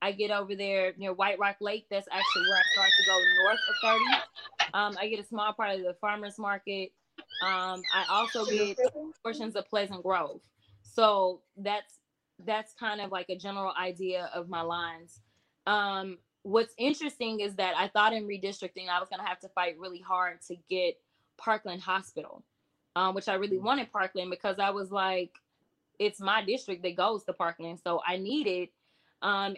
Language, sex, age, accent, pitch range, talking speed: English, female, 20-39, American, 185-220 Hz, 185 wpm